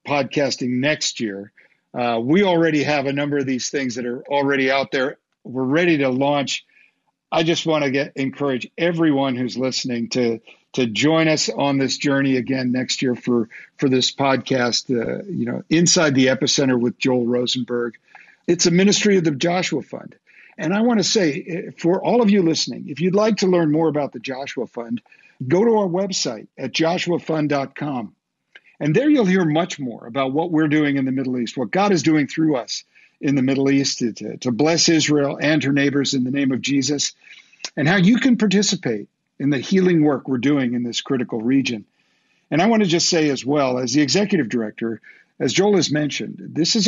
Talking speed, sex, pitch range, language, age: 200 wpm, male, 130-170 Hz, English, 50-69